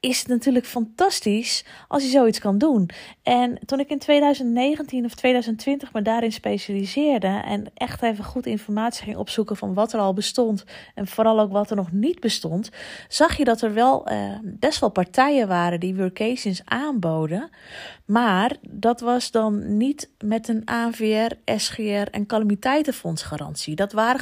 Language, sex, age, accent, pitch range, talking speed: Dutch, female, 30-49, Dutch, 185-240 Hz, 160 wpm